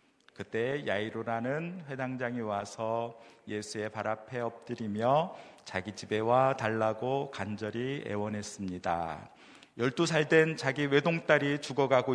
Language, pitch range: Korean, 110-145 Hz